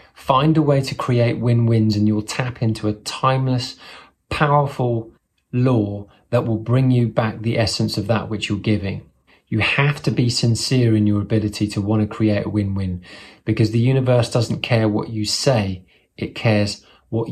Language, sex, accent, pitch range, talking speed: English, male, British, 105-125 Hz, 175 wpm